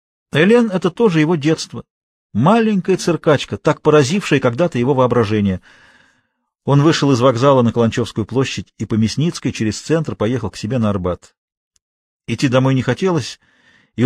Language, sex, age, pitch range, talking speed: Russian, male, 40-59, 105-150 Hz, 145 wpm